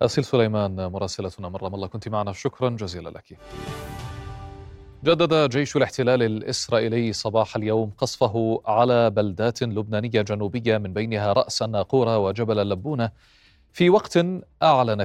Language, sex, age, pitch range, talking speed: Arabic, male, 30-49, 105-130 Hz, 115 wpm